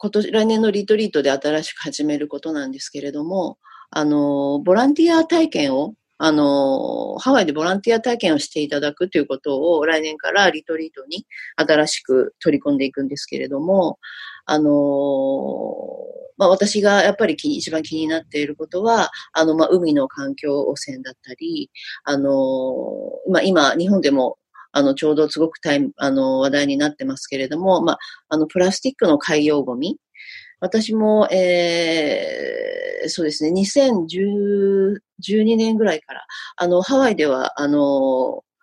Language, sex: Japanese, female